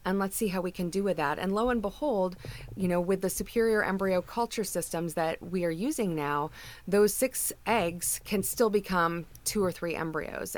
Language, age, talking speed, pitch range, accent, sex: English, 30-49, 205 wpm, 155-195 Hz, American, female